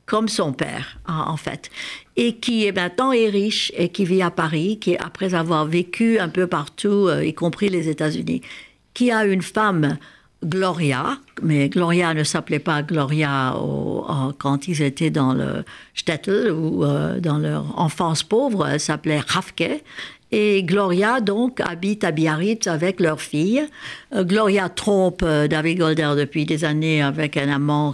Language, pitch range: French, 160-215 Hz